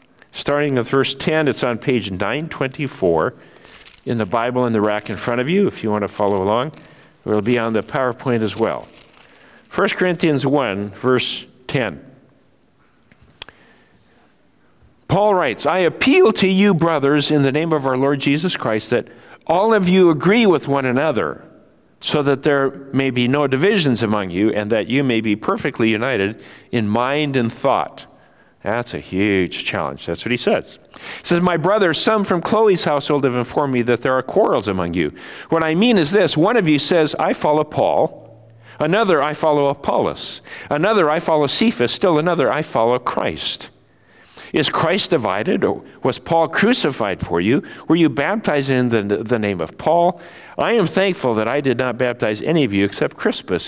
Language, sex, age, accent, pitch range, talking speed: English, male, 50-69, American, 120-165 Hz, 180 wpm